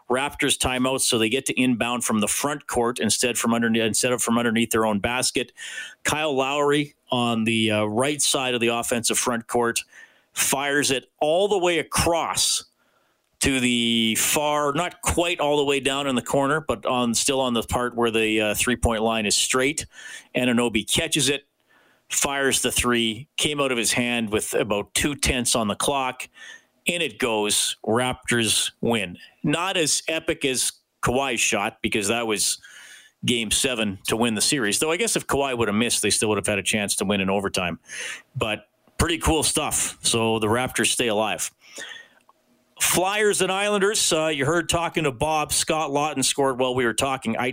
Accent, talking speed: American, 185 wpm